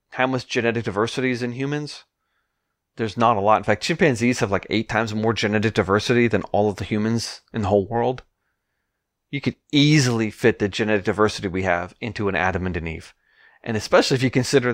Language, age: English, 30-49